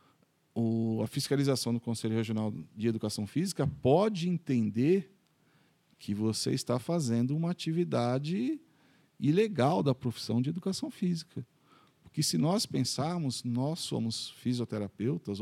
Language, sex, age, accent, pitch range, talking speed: Portuguese, male, 50-69, Brazilian, 110-150 Hz, 115 wpm